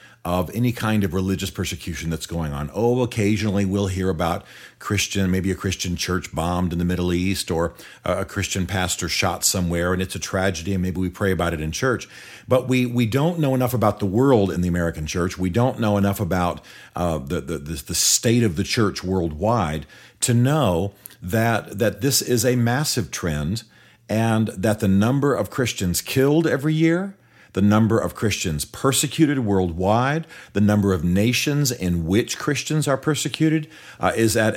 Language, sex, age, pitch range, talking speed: English, male, 40-59, 90-130 Hz, 180 wpm